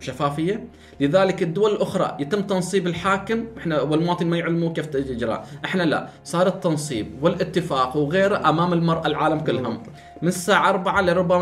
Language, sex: Arabic, male